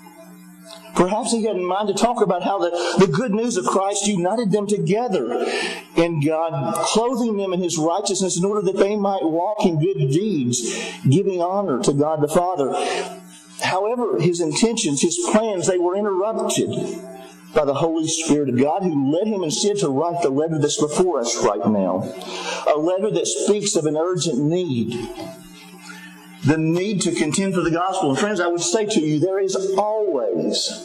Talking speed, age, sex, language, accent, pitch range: 180 wpm, 50-69, male, English, American, 150-200 Hz